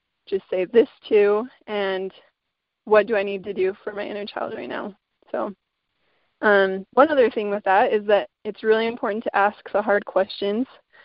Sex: female